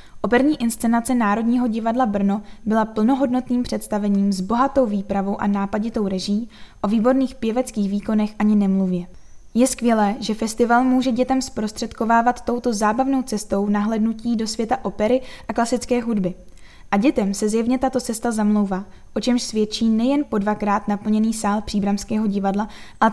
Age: 10-29